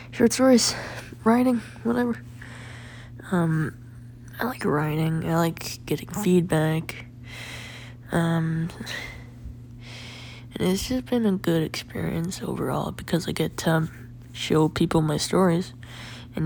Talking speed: 110 wpm